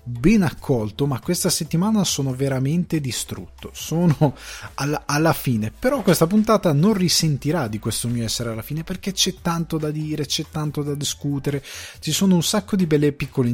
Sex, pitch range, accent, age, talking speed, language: male, 125-180 Hz, native, 20-39, 175 wpm, Italian